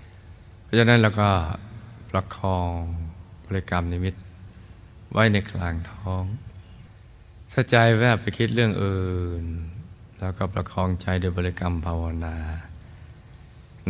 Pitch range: 90-105 Hz